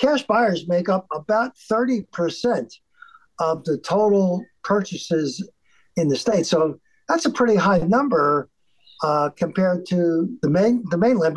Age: 50-69